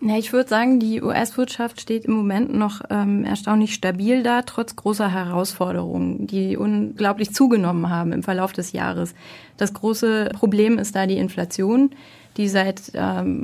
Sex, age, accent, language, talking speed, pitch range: female, 30-49, German, German, 150 wpm, 180-220 Hz